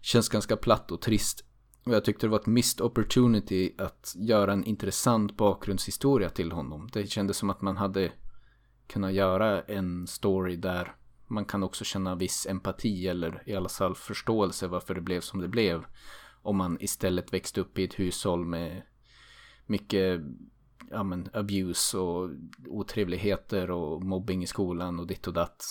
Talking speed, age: 165 wpm, 20-39